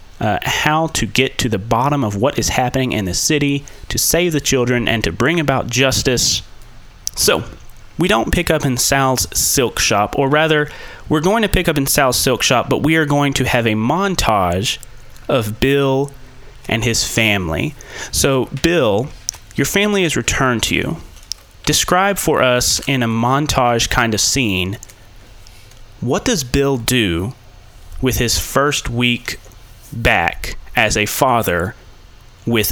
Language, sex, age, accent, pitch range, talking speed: English, male, 30-49, American, 105-135 Hz, 160 wpm